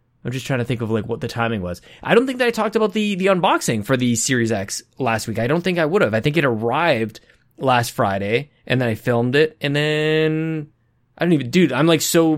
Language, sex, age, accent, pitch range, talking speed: English, male, 20-39, American, 120-170 Hz, 255 wpm